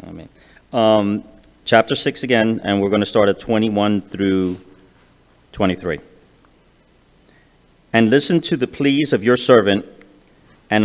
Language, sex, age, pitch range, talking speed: English, male, 40-59, 105-135 Hz, 135 wpm